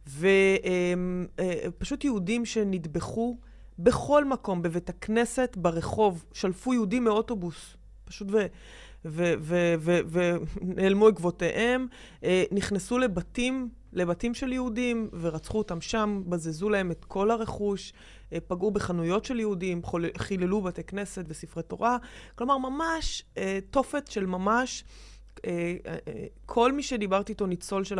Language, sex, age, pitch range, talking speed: Hebrew, female, 30-49, 175-225 Hz, 100 wpm